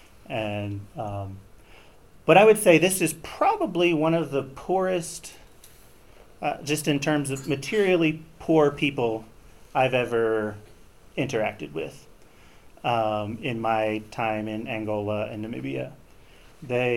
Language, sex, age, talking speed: English, male, 40-59, 120 wpm